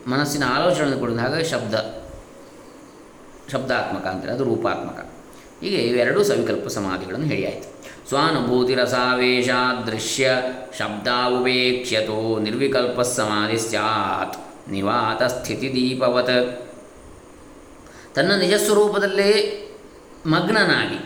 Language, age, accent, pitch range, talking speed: Kannada, 20-39, native, 120-160 Hz, 75 wpm